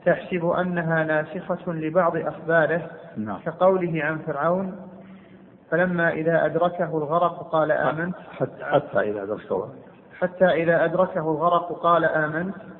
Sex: male